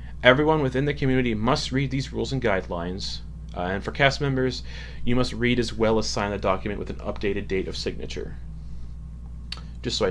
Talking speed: 195 wpm